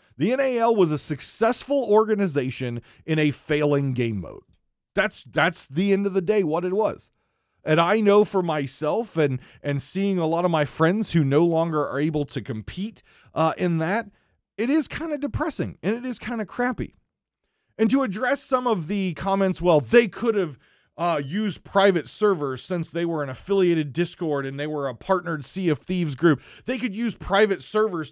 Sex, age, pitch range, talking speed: male, 40-59, 155-220 Hz, 190 wpm